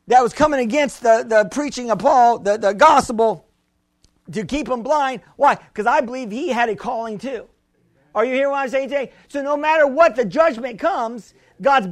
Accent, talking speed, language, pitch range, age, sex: American, 200 wpm, English, 235-290 Hz, 50-69, male